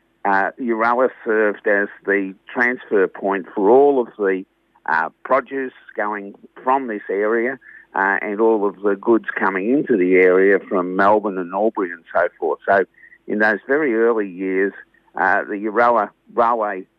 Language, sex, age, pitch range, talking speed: English, male, 50-69, 95-115 Hz, 155 wpm